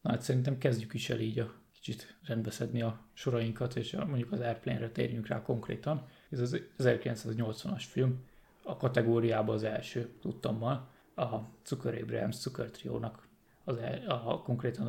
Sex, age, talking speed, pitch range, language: male, 20-39, 135 wpm, 115-130 Hz, Hungarian